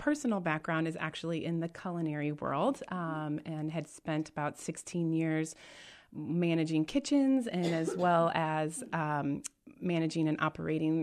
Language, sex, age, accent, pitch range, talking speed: English, female, 20-39, American, 160-185 Hz, 135 wpm